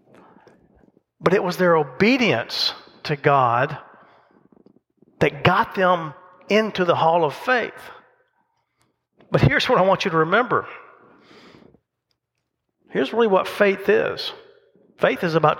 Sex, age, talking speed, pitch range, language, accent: male, 50-69, 120 wpm, 145-185 Hz, English, American